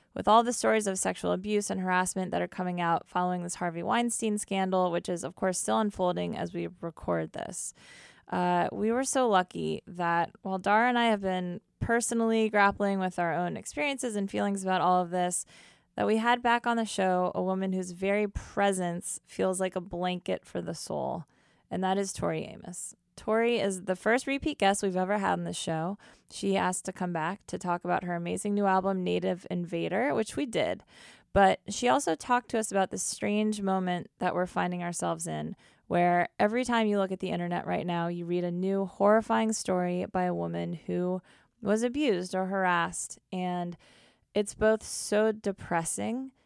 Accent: American